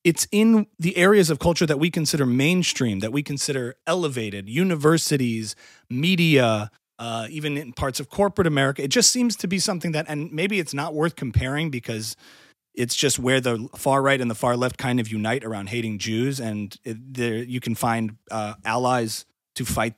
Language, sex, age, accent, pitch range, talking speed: English, male, 30-49, American, 120-155 Hz, 190 wpm